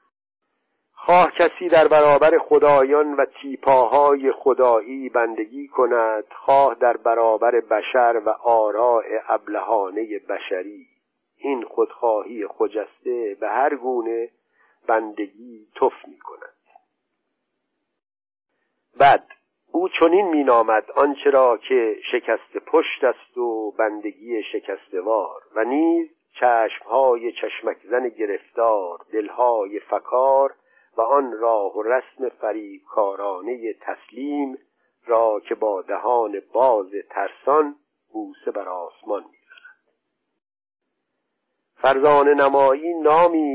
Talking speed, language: 95 wpm, Persian